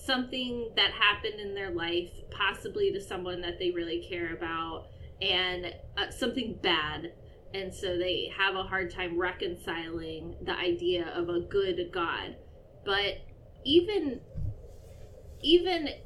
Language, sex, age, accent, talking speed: English, female, 20-39, American, 130 wpm